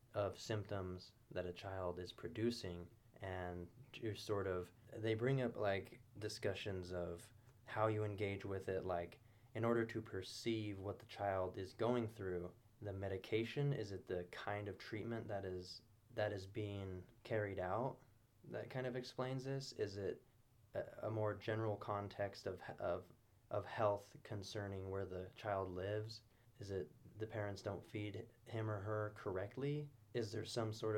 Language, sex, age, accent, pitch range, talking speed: English, male, 20-39, American, 95-115 Hz, 160 wpm